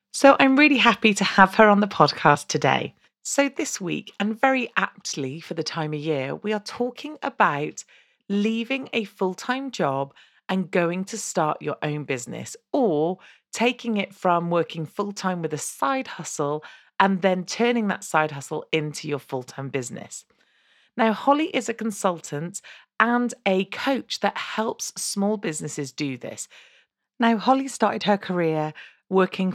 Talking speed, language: 155 wpm, English